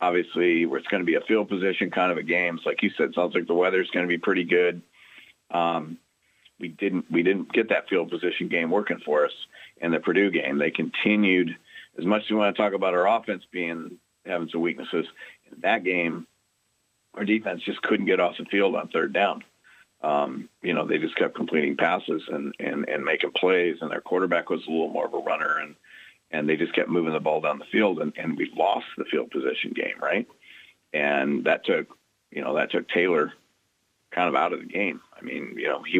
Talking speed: 230 wpm